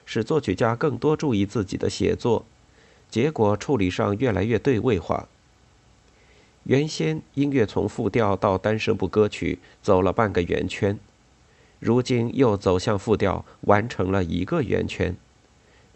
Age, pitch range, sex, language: 50-69, 100-135 Hz, male, Chinese